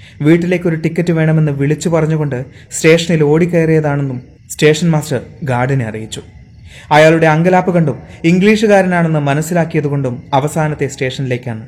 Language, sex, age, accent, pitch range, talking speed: Malayalam, male, 30-49, native, 120-165 Hz, 100 wpm